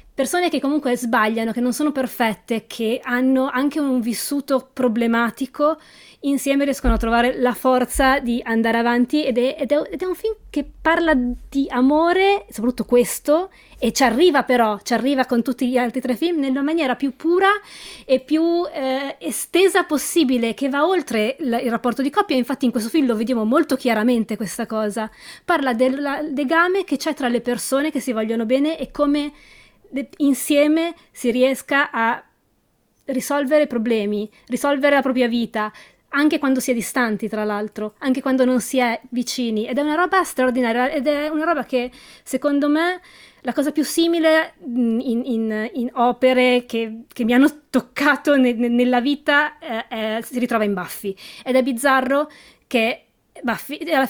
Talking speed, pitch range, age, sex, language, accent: 165 wpm, 240-290 Hz, 20-39, female, Italian, native